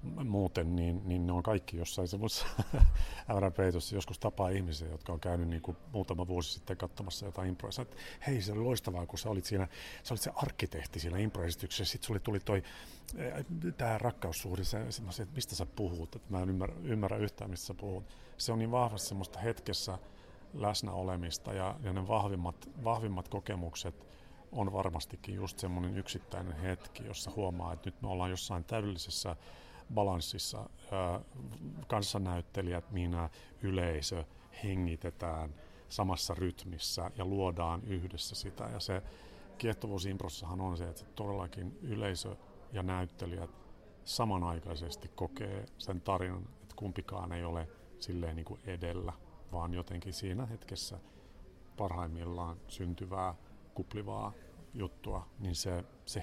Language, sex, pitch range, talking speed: Finnish, male, 90-105 Hz, 135 wpm